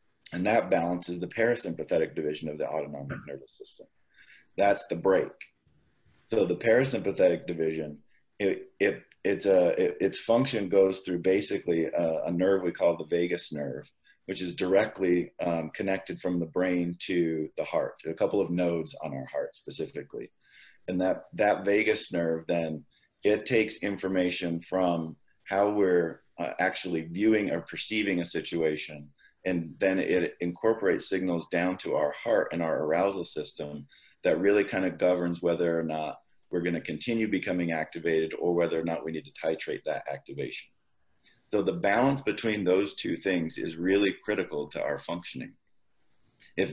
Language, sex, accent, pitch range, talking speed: English, male, American, 85-100 Hz, 160 wpm